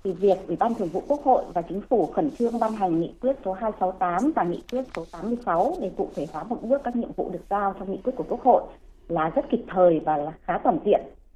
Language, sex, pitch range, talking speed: Vietnamese, female, 190-270 Hz, 265 wpm